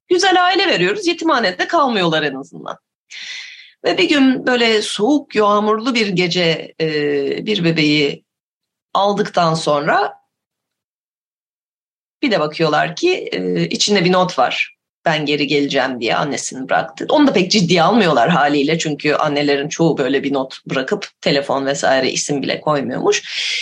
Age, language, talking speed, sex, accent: 30-49, Turkish, 130 wpm, female, native